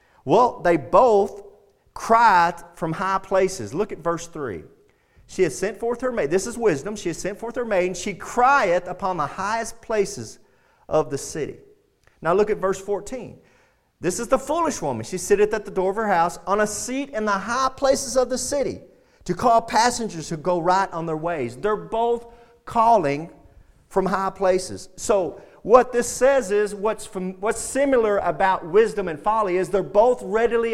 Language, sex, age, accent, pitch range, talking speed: English, male, 40-59, American, 185-245 Hz, 185 wpm